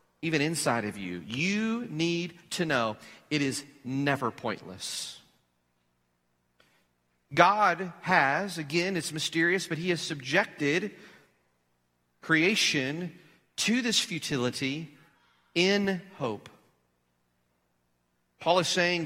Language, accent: English, American